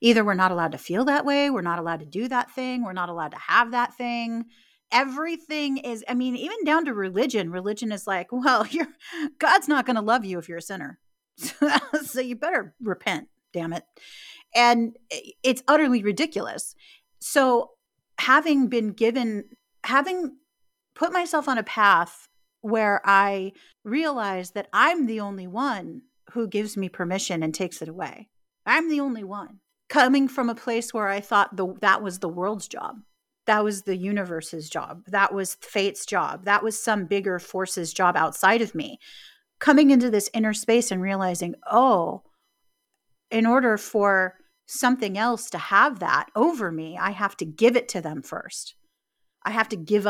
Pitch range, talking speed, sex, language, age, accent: 195-275 Hz, 175 wpm, female, English, 40-59, American